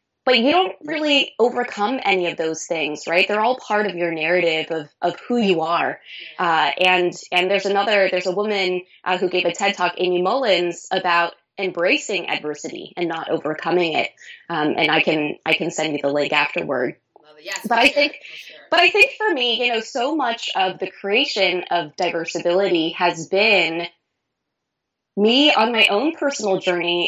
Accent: American